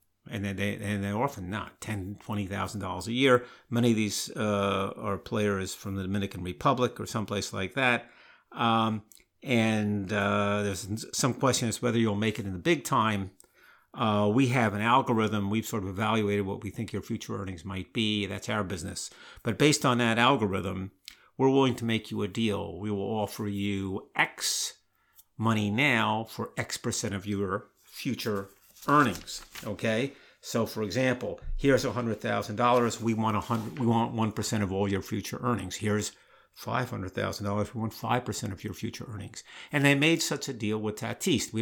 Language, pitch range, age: English, 100-120 Hz, 50-69